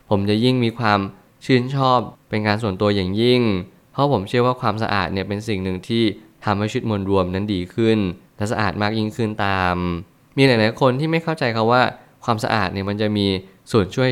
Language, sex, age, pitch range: Thai, male, 20-39, 100-125 Hz